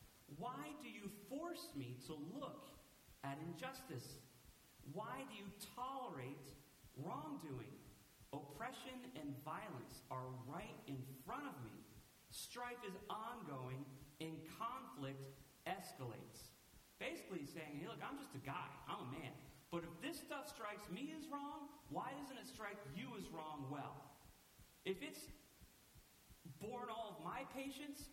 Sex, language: male, English